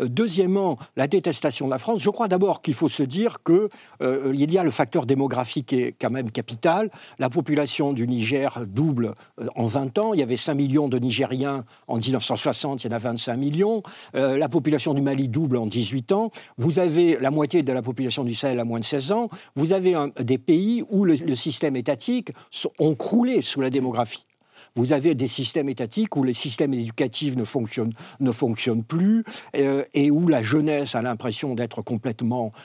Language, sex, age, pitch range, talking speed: French, male, 60-79, 130-170 Hz, 205 wpm